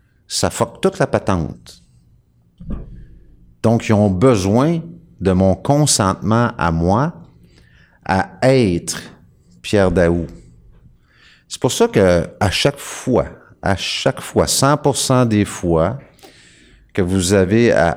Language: French